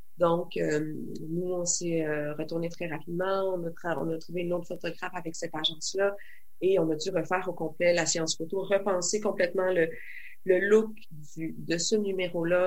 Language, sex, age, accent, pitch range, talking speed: French, female, 30-49, Canadian, 170-205 Hz, 190 wpm